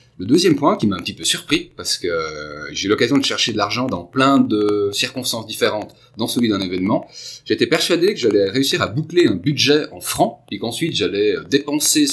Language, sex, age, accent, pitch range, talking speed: French, male, 30-49, French, 105-165 Hz, 210 wpm